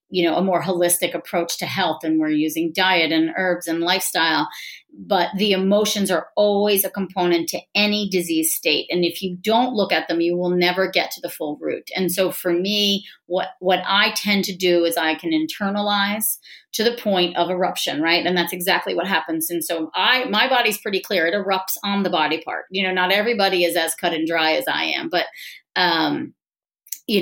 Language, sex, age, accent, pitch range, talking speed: English, female, 30-49, American, 165-200 Hz, 210 wpm